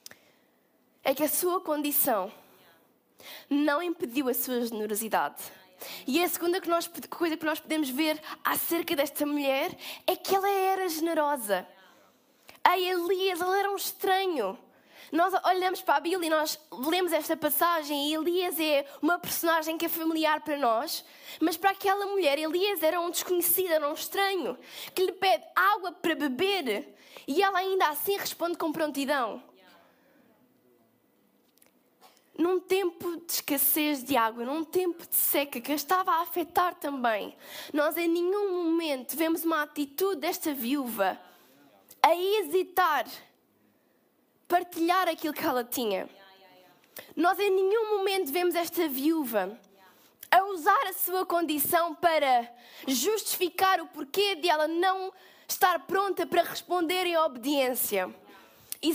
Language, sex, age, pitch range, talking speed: Portuguese, female, 20-39, 290-365 Hz, 135 wpm